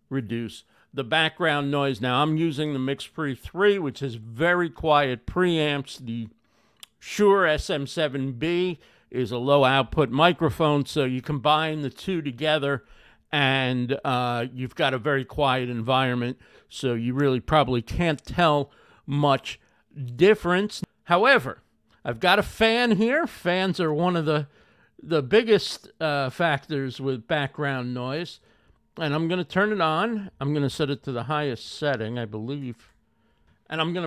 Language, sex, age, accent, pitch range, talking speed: English, male, 50-69, American, 120-155 Hz, 145 wpm